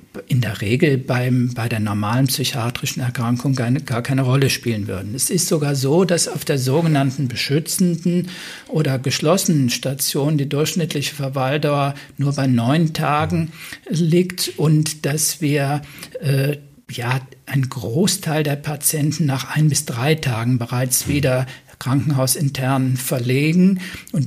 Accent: German